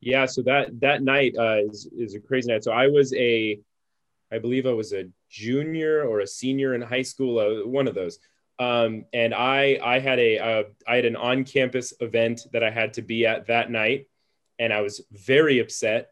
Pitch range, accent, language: 115-130 Hz, American, English